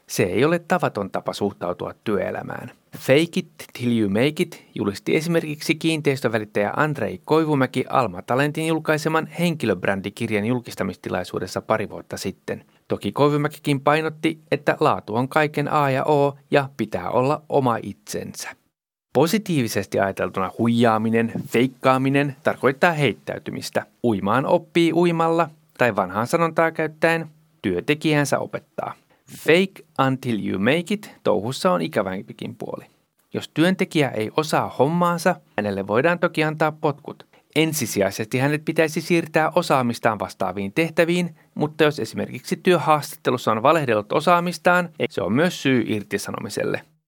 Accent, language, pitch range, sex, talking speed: native, Finnish, 115-160 Hz, male, 120 wpm